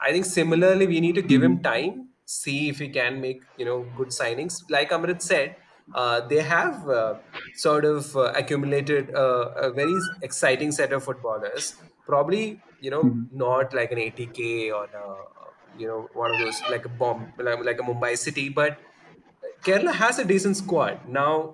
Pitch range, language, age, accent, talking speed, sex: 120-150 Hz, English, 20-39, Indian, 180 wpm, male